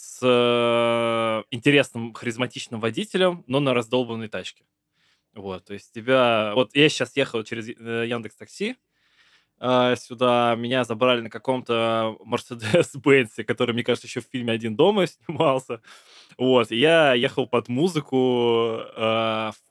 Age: 20-39